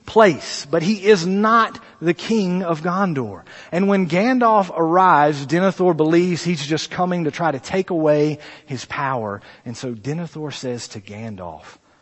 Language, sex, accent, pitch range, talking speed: English, male, American, 140-195 Hz, 155 wpm